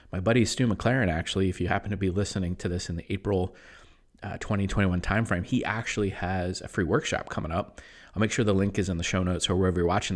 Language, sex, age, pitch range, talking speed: English, male, 30-49, 90-110 Hz, 240 wpm